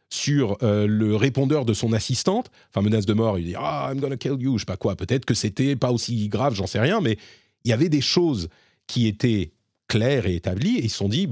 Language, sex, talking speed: French, male, 260 wpm